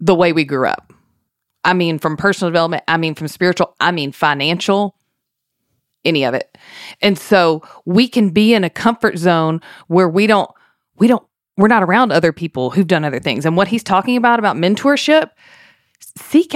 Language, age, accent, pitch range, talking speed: English, 30-49, American, 160-215 Hz, 185 wpm